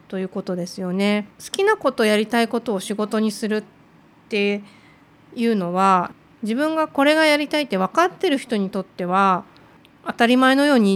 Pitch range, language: 190-245 Hz, Japanese